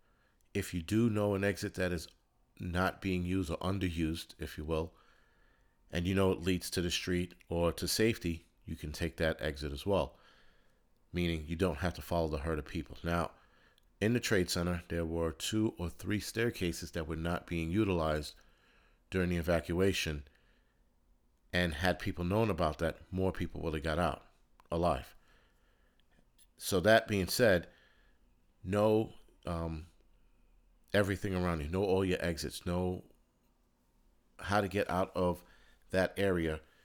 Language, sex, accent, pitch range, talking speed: English, male, American, 80-95 Hz, 160 wpm